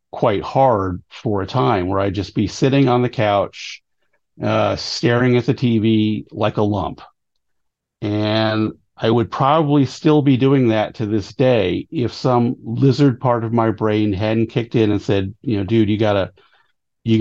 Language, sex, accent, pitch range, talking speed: English, male, American, 105-125 Hz, 175 wpm